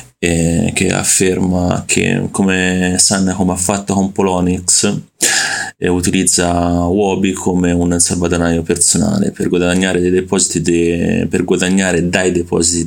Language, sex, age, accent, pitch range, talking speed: Italian, male, 30-49, native, 85-100 Hz, 110 wpm